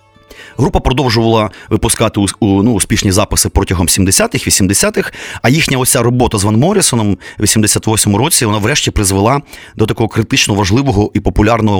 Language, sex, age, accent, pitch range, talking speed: Ukrainian, male, 30-49, native, 95-125 Hz, 140 wpm